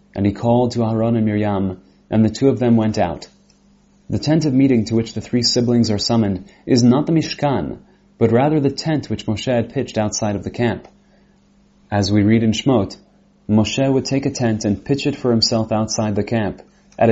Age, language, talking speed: 30-49, English, 210 wpm